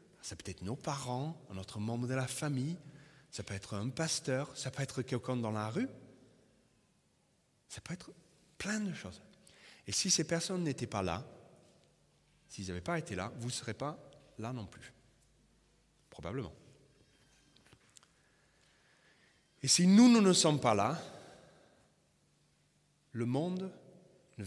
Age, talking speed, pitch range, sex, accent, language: 30-49, 145 wpm, 105-155 Hz, male, French, French